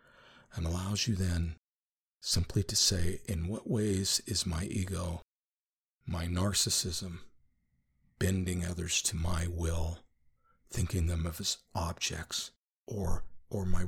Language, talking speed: English, 120 wpm